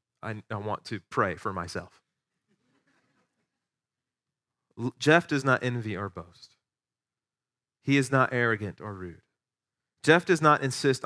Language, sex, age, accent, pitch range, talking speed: English, male, 30-49, American, 115-155 Hz, 125 wpm